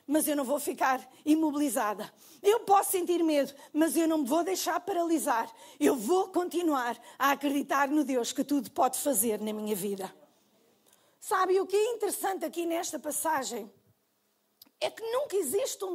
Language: Portuguese